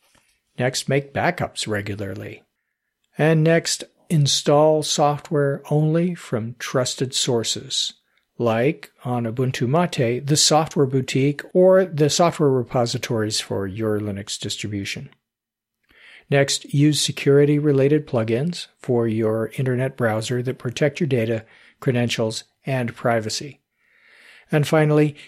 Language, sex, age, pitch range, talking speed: English, male, 50-69, 115-155 Hz, 105 wpm